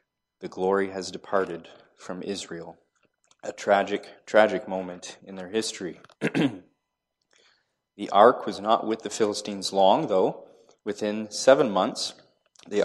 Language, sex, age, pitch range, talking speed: English, male, 30-49, 95-110 Hz, 120 wpm